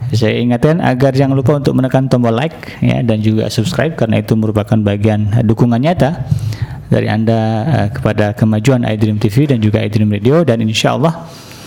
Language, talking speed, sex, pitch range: Indonesian, 165 wpm, male, 110-140 Hz